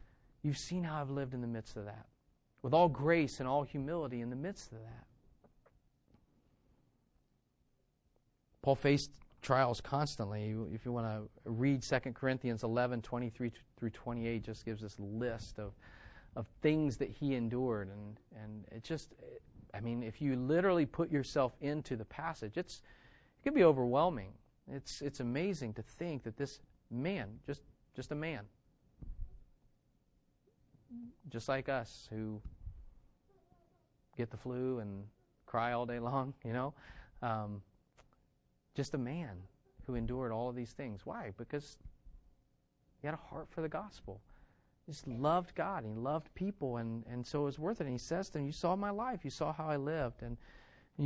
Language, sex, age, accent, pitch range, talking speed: English, male, 40-59, American, 115-145 Hz, 165 wpm